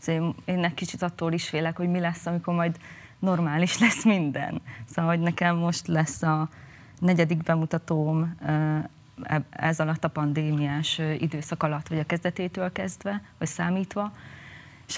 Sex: female